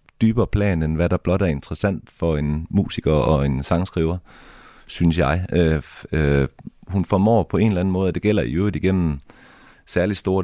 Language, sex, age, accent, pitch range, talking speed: Danish, male, 30-49, native, 80-105 Hz, 190 wpm